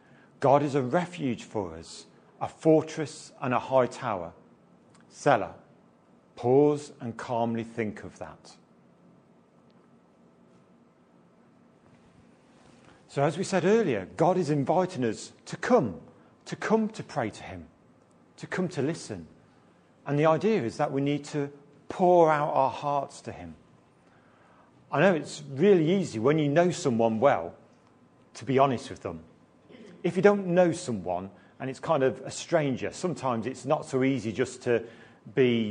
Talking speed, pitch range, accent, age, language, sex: 150 wpm, 115-155 Hz, British, 40-59, English, male